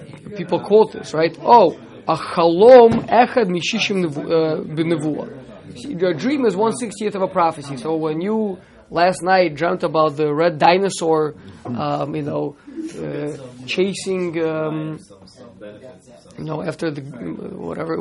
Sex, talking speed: male, 130 wpm